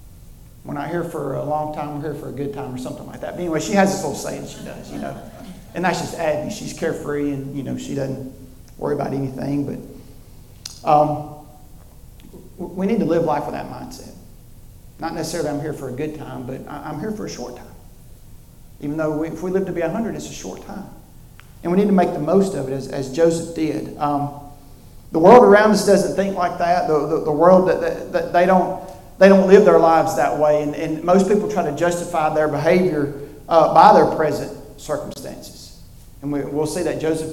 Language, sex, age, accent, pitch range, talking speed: English, male, 40-59, American, 135-175 Hz, 215 wpm